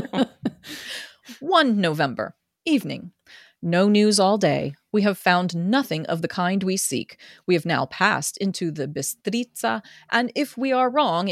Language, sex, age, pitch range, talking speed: English, female, 30-49, 170-240 Hz, 150 wpm